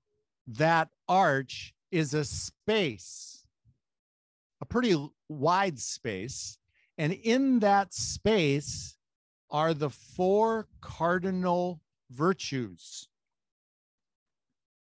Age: 50-69